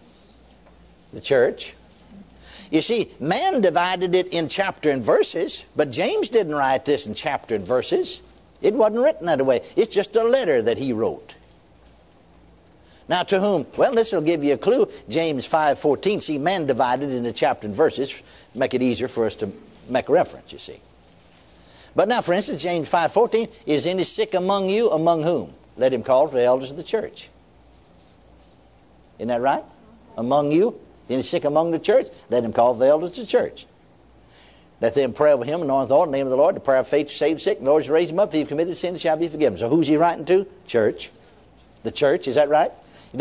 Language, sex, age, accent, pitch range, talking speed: English, male, 60-79, American, 145-225 Hz, 210 wpm